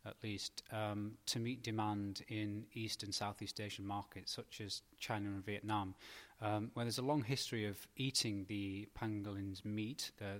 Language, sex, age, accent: English, male, 20-39, British